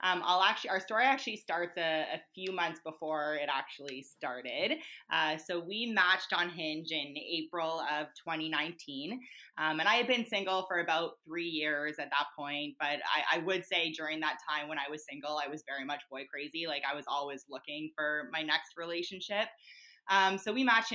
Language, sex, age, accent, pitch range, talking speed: English, female, 20-39, American, 150-185 Hz, 195 wpm